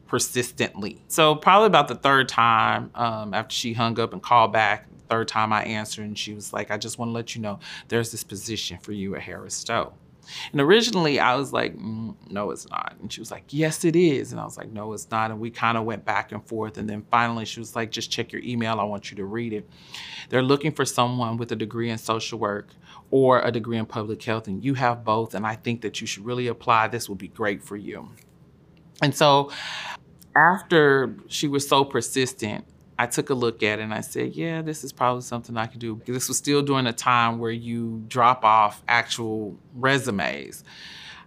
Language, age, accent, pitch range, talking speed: English, 40-59, American, 110-125 Hz, 225 wpm